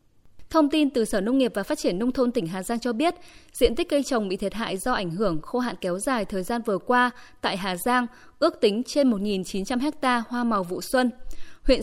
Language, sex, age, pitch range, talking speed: Vietnamese, female, 10-29, 210-275 Hz, 240 wpm